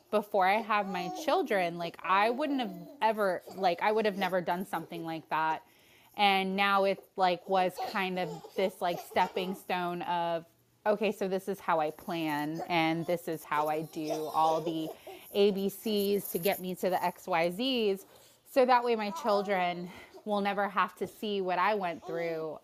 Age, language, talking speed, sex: 20-39, English, 180 wpm, female